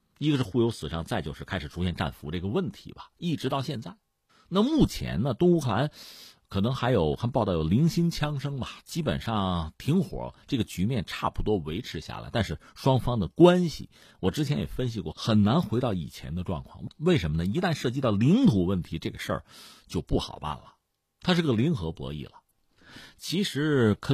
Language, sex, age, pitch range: Chinese, male, 50-69, 90-140 Hz